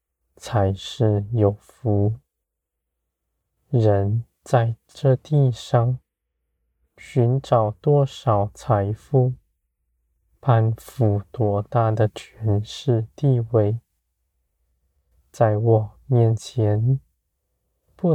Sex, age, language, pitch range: male, 20-39, Chinese, 80-120 Hz